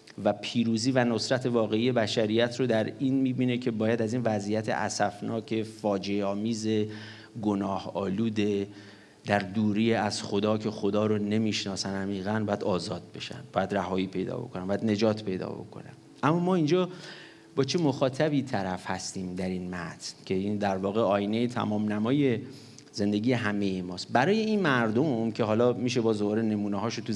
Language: English